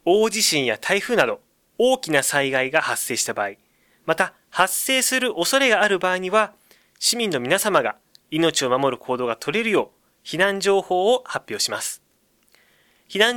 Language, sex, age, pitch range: Japanese, male, 20-39, 140-215 Hz